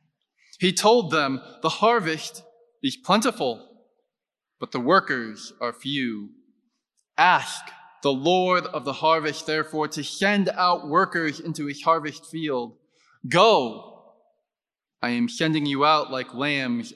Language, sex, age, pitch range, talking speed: English, male, 20-39, 150-215 Hz, 125 wpm